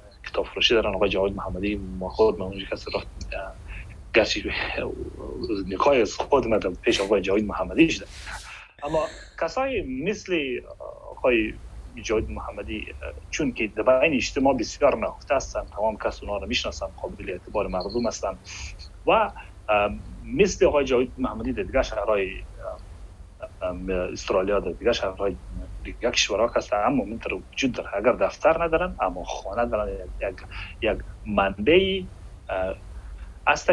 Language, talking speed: Persian, 120 wpm